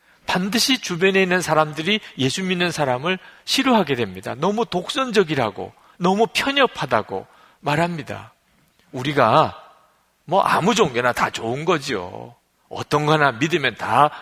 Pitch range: 125-200 Hz